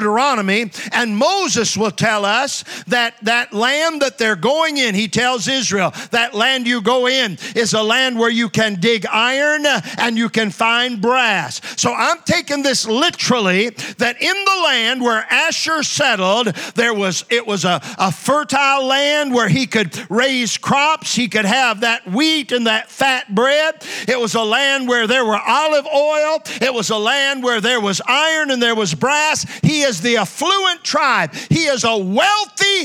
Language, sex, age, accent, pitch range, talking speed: English, male, 50-69, American, 205-265 Hz, 175 wpm